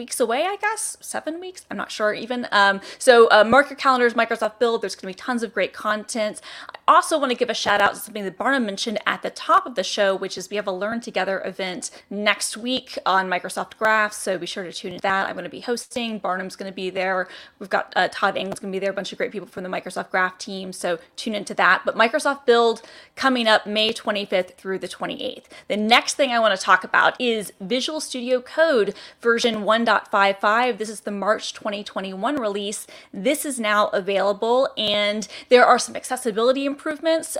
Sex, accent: female, American